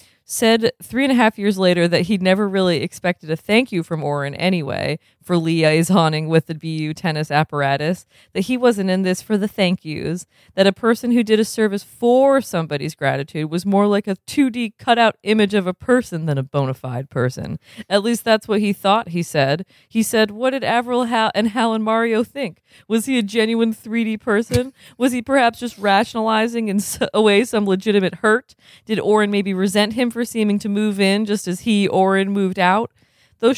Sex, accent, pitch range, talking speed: female, American, 155-210 Hz, 205 wpm